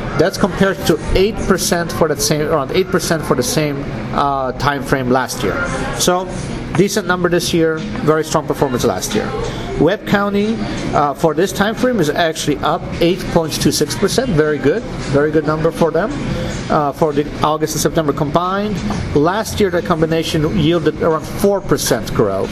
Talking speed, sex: 180 wpm, male